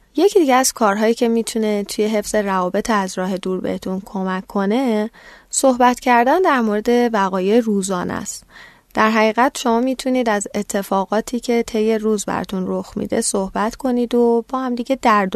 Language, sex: Persian, female